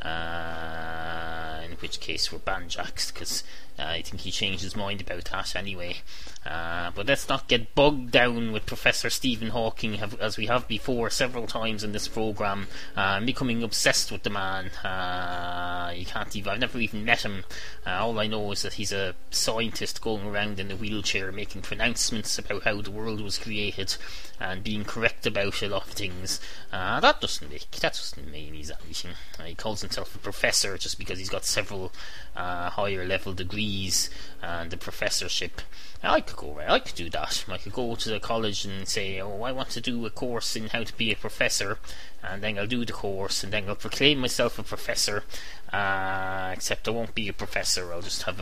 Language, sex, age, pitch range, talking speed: English, male, 20-39, 90-110 Hz, 200 wpm